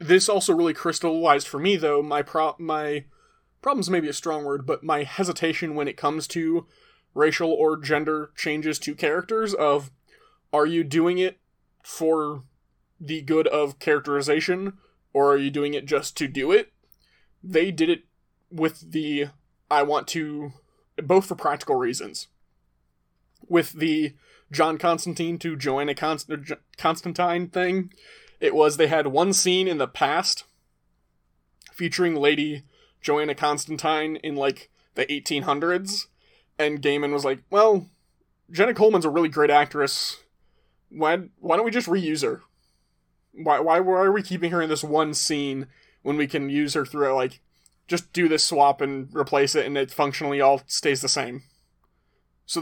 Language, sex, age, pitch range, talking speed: English, male, 20-39, 145-170 Hz, 155 wpm